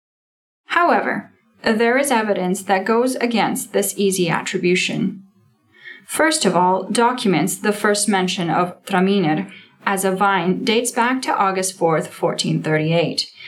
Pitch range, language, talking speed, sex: 185-230 Hz, English, 125 wpm, female